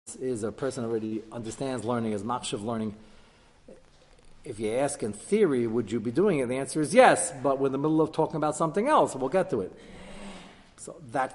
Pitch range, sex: 110-135 Hz, male